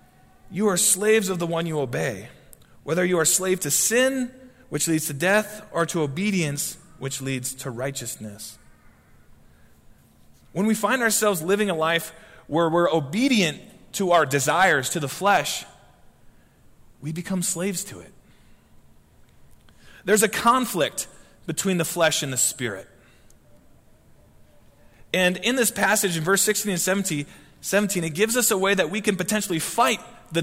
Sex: male